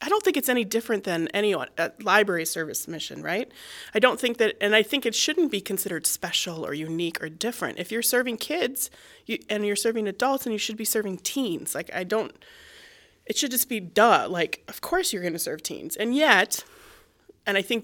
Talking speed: 210 wpm